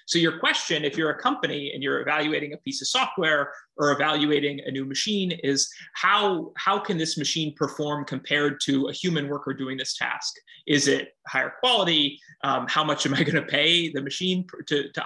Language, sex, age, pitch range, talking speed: English, male, 30-49, 140-165 Hz, 200 wpm